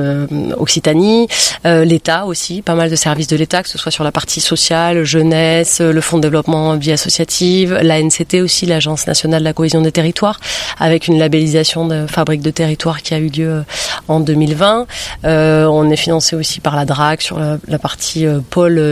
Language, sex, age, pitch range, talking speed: French, female, 30-49, 155-170 Hz, 195 wpm